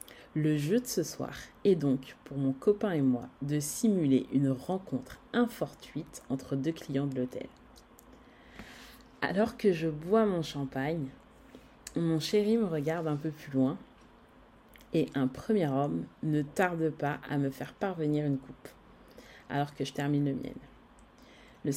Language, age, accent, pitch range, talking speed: French, 30-49, French, 135-175 Hz, 155 wpm